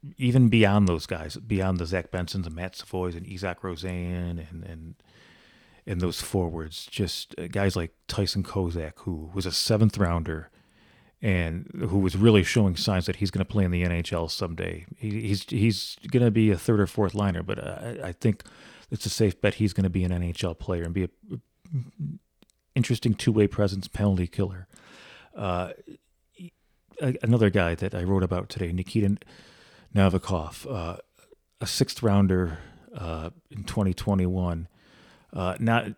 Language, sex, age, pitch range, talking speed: English, male, 30-49, 95-115 Hz, 165 wpm